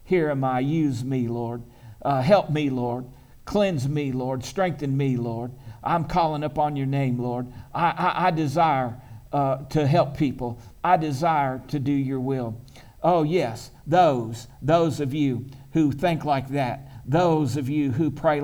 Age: 50-69